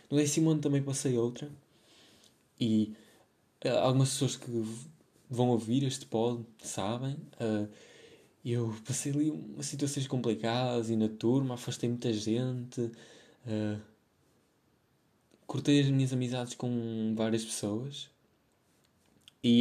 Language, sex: English, male